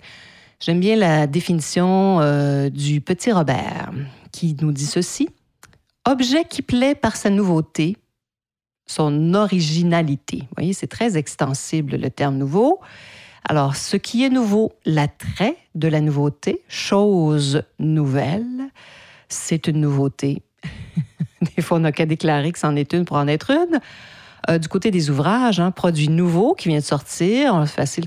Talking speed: 155 wpm